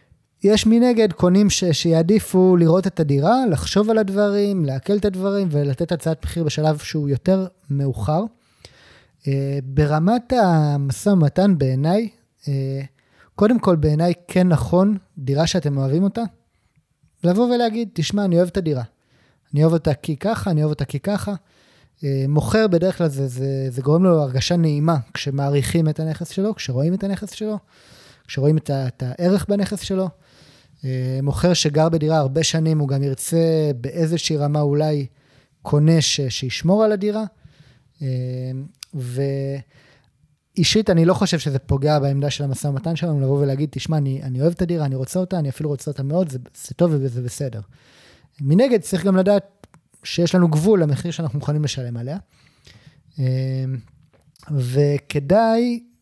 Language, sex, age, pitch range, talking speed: Hebrew, male, 20-39, 140-185 Hz, 145 wpm